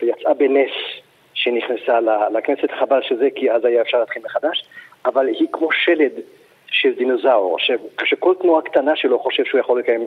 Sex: male